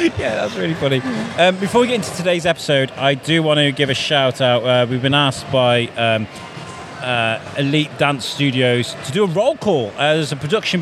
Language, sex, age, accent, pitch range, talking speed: English, male, 30-49, British, 135-165 Hz, 210 wpm